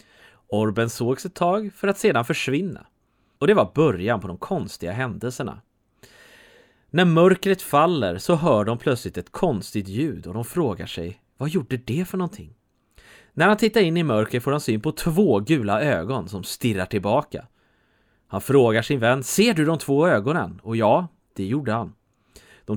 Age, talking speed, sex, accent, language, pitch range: 30-49, 175 wpm, male, Swedish, English, 110-180 Hz